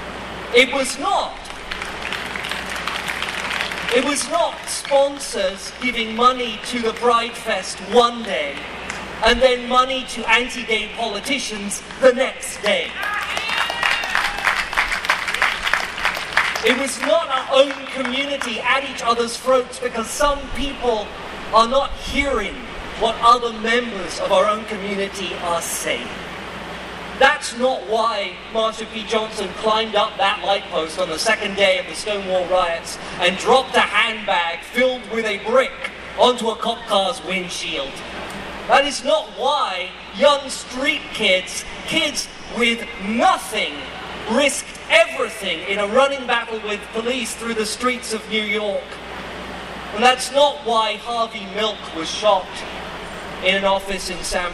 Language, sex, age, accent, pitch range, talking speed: English, male, 40-59, British, 200-255 Hz, 130 wpm